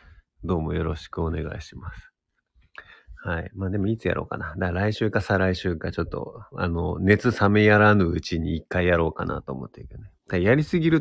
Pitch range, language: 85-105 Hz, Japanese